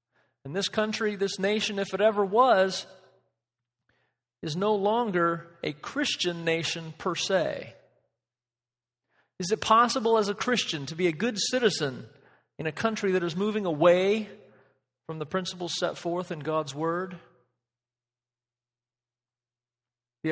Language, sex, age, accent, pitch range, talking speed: English, male, 40-59, American, 145-210 Hz, 130 wpm